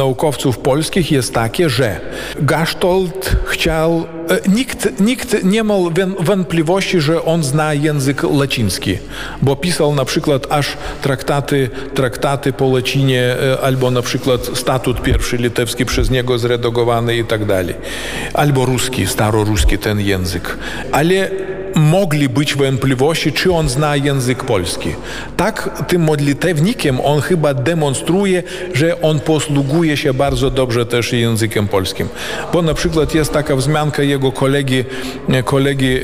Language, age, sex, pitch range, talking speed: Polish, 50-69, male, 130-165 Hz, 125 wpm